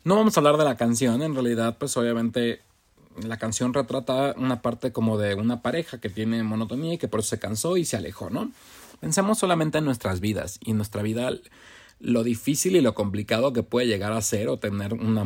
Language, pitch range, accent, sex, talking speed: Spanish, 105-135 Hz, Mexican, male, 215 wpm